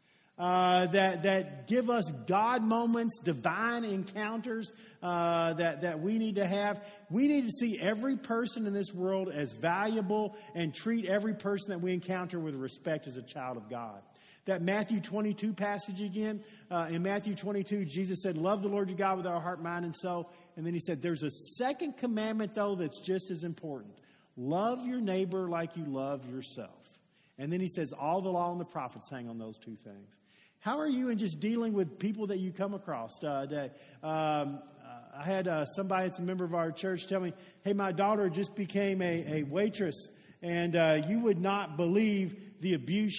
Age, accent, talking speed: 50-69, American, 195 wpm